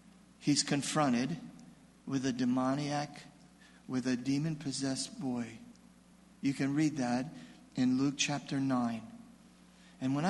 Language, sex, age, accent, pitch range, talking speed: English, male, 50-69, American, 140-200 Hz, 115 wpm